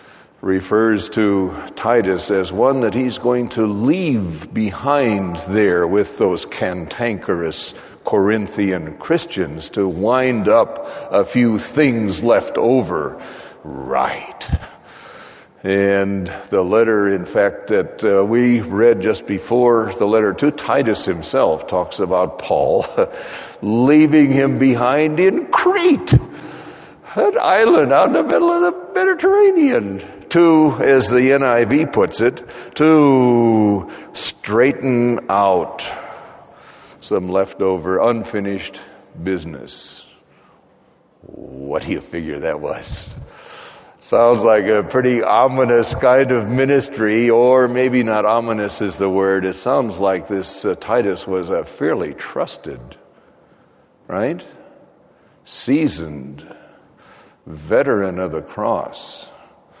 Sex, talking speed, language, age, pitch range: male, 110 wpm, English, 60-79, 100-130 Hz